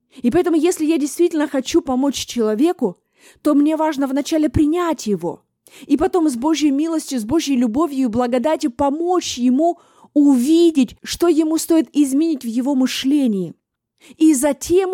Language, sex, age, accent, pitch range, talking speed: Russian, female, 20-39, native, 240-310 Hz, 145 wpm